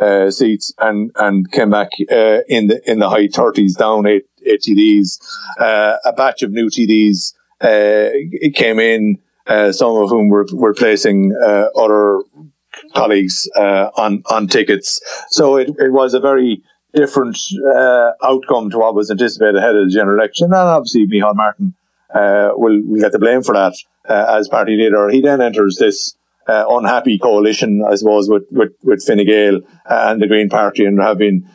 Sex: male